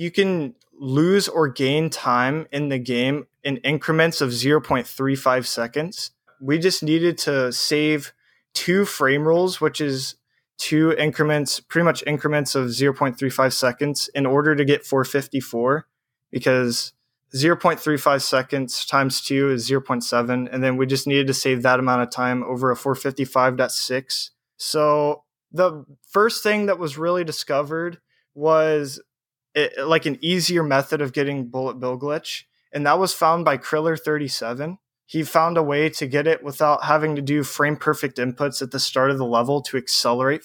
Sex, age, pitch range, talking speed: male, 20-39, 130-155 Hz, 155 wpm